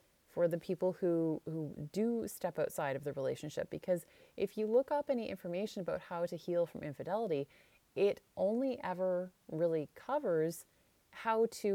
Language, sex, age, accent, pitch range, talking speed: English, female, 30-49, American, 160-200 Hz, 160 wpm